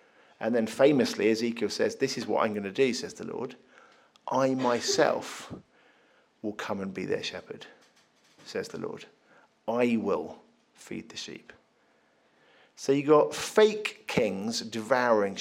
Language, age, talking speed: English, 50-69, 145 wpm